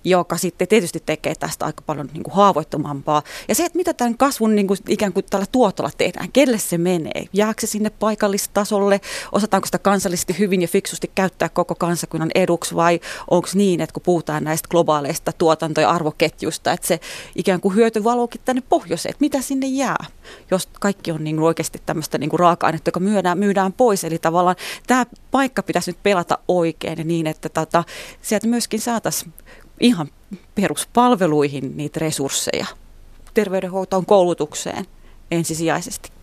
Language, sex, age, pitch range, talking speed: Finnish, female, 30-49, 165-225 Hz, 160 wpm